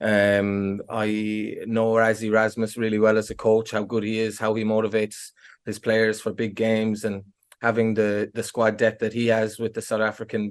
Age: 20-39